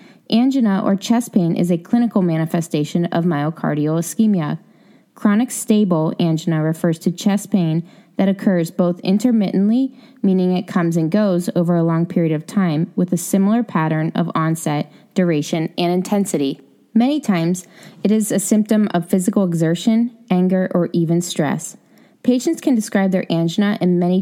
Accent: American